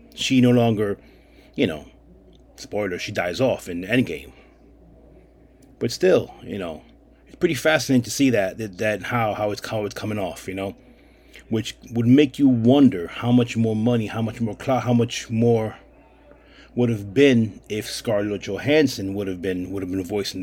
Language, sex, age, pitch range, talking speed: English, male, 30-49, 100-125 Hz, 180 wpm